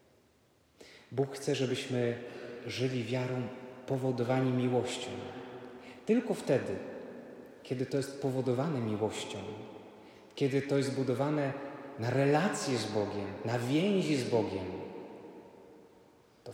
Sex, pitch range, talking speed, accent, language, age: male, 120-145 Hz, 100 wpm, native, Polish, 30-49